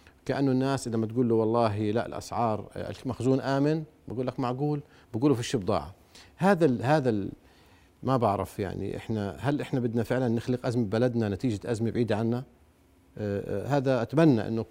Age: 50-69